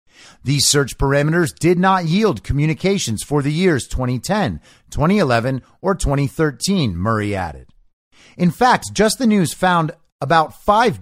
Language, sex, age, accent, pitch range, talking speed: English, male, 50-69, American, 120-165 Hz, 130 wpm